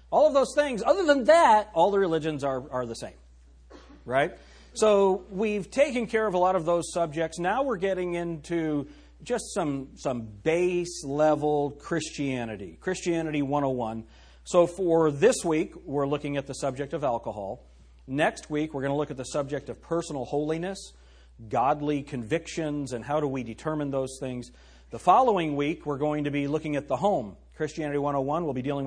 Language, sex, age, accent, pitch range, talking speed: English, male, 40-59, American, 125-170 Hz, 175 wpm